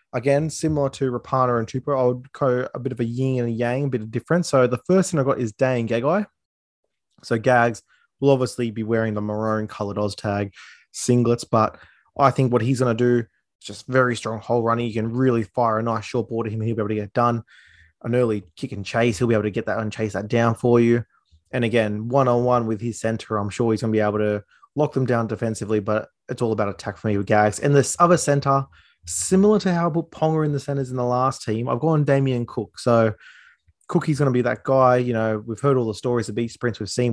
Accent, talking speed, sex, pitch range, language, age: Australian, 250 wpm, male, 110-130 Hz, English, 20-39